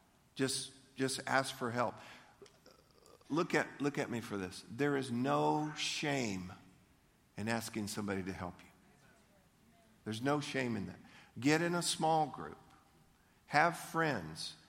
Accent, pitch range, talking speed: American, 120-145 Hz, 140 wpm